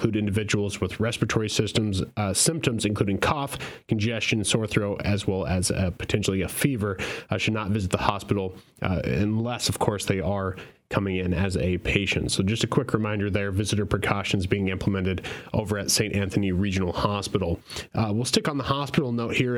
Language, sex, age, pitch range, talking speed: English, male, 30-49, 100-125 Hz, 180 wpm